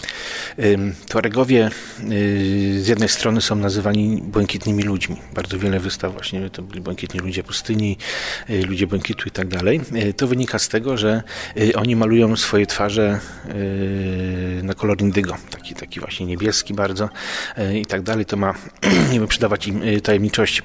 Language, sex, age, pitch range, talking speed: Polish, male, 40-59, 95-110 Hz, 140 wpm